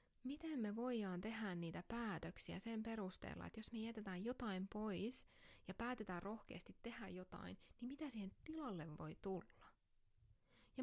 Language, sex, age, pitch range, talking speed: English, female, 20-39, 175-225 Hz, 145 wpm